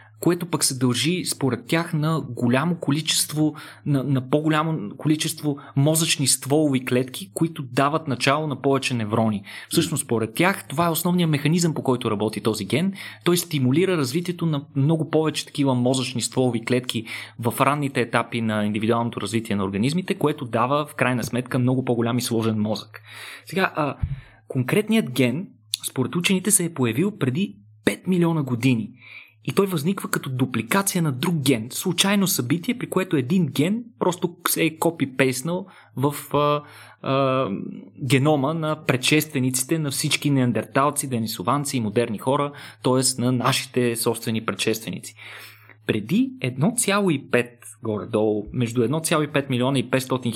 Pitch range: 120-160 Hz